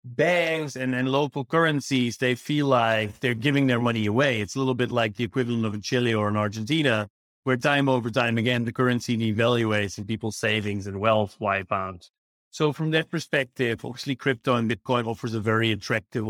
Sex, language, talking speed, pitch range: male, English, 195 wpm, 110-135 Hz